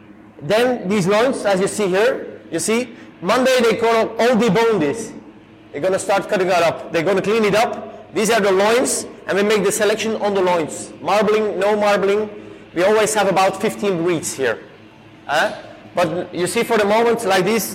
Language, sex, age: German, male, 30-49